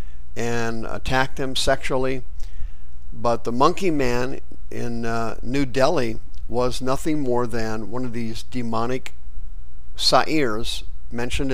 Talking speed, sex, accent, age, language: 115 wpm, male, American, 50-69, English